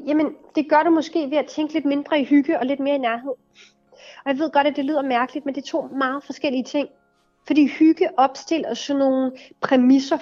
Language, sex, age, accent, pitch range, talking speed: Danish, female, 30-49, native, 220-275 Hz, 225 wpm